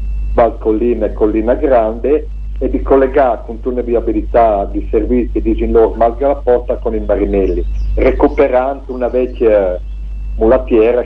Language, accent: Italian, native